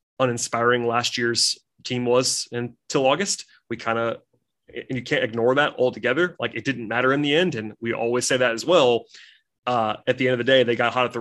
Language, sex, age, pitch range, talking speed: English, male, 20-39, 120-145 Hz, 225 wpm